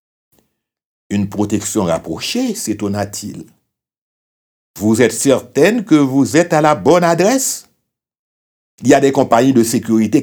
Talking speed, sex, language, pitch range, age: 125 wpm, male, French, 100-150 Hz, 60-79